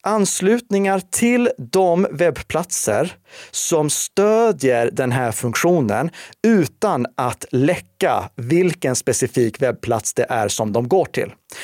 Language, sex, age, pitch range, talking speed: Swedish, male, 30-49, 130-185 Hz, 110 wpm